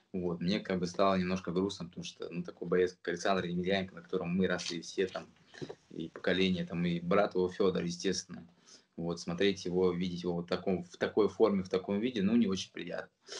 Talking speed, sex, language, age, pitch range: 205 wpm, male, Russian, 20-39, 90-100 Hz